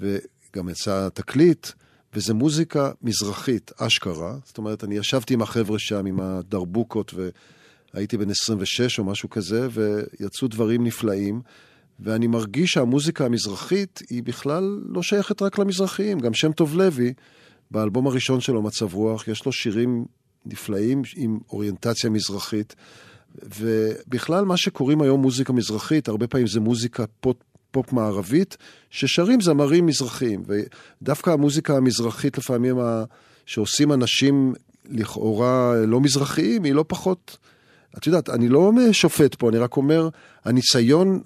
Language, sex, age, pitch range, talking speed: Hebrew, male, 40-59, 110-145 Hz, 130 wpm